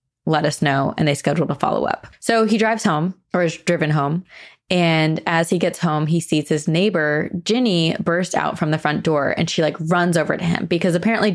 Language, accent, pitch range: English, American, 155-185 Hz